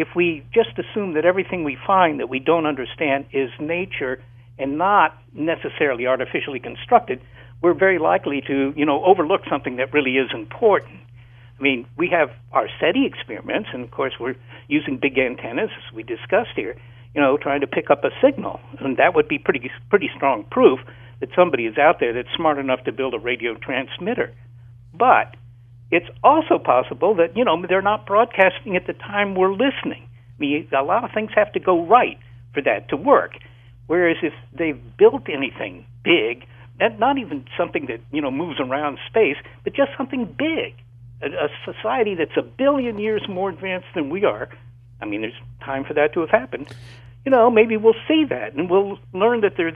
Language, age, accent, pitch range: English, 60-79, American, 120-190 Hz